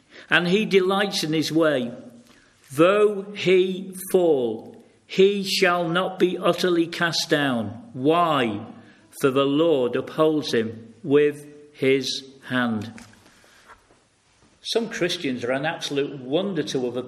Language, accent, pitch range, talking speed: English, British, 150-205 Hz, 115 wpm